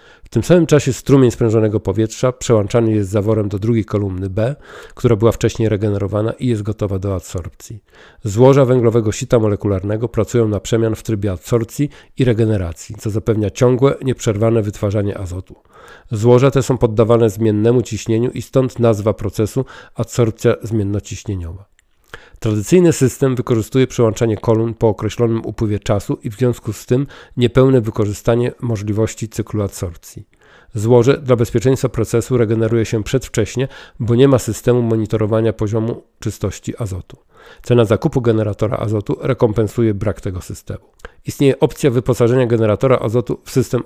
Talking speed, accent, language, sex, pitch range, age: 140 wpm, native, Polish, male, 110-125 Hz, 40-59